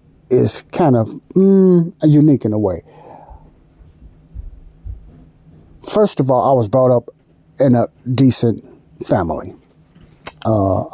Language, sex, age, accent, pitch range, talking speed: English, male, 60-79, American, 105-130 Hz, 110 wpm